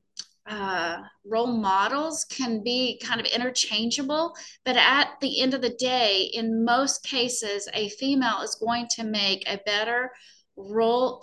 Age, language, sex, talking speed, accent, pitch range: 30-49, English, female, 145 wpm, American, 205-250 Hz